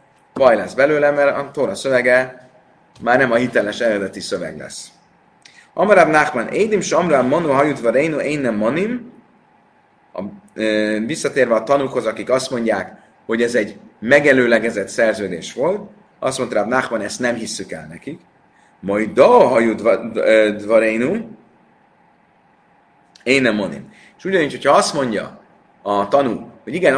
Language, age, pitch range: Hungarian, 30-49, 110-145 Hz